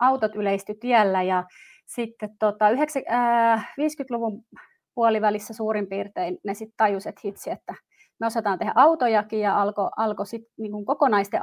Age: 30-49